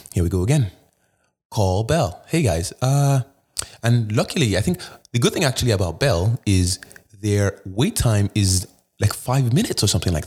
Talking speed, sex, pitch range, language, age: 175 wpm, male, 95-135 Hz, English, 20-39